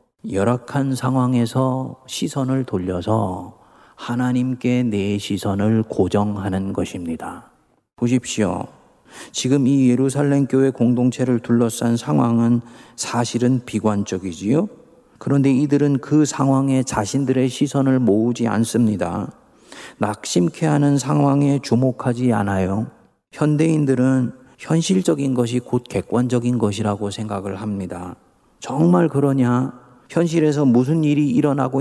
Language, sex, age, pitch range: Korean, male, 40-59, 120-145 Hz